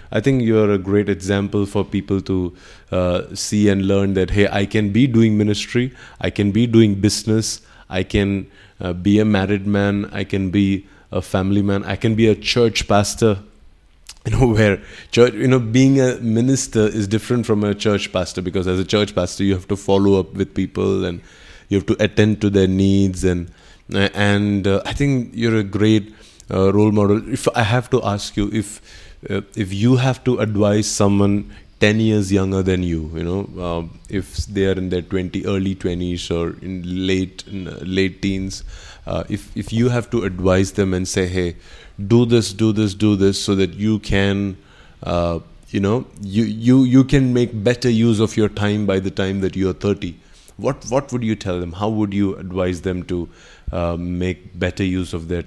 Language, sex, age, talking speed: English, male, 20-39, 200 wpm